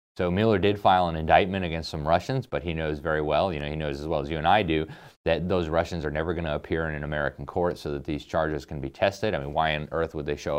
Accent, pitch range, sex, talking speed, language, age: American, 75-95 Hz, male, 295 wpm, English, 30-49